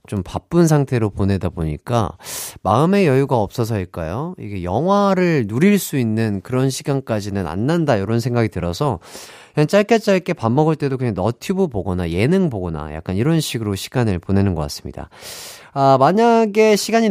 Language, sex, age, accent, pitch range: Korean, male, 30-49, native, 100-155 Hz